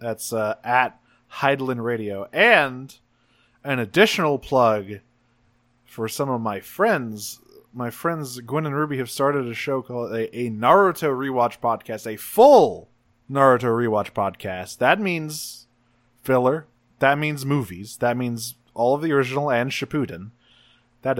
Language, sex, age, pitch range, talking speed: English, male, 20-39, 115-140 Hz, 140 wpm